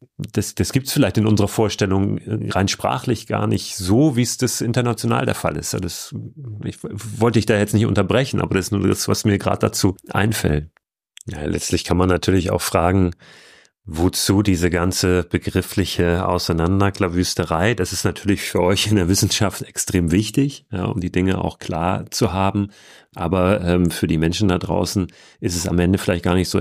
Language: German